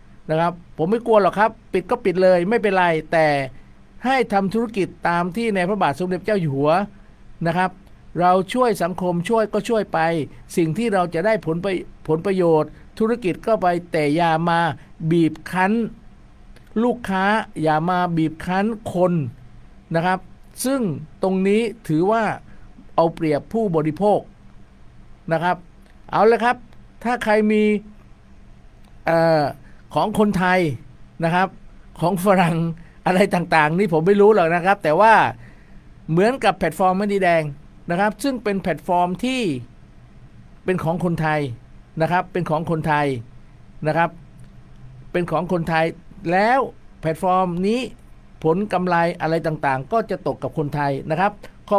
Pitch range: 160-210 Hz